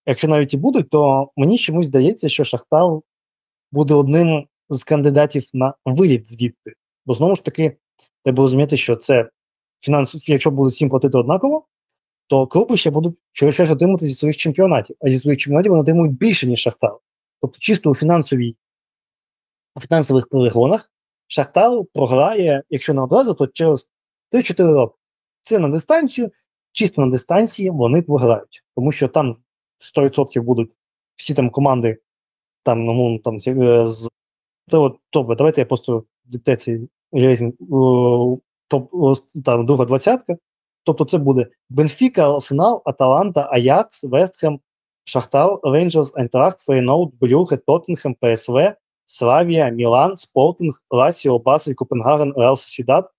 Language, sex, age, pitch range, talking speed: Ukrainian, male, 20-39, 130-160 Hz, 130 wpm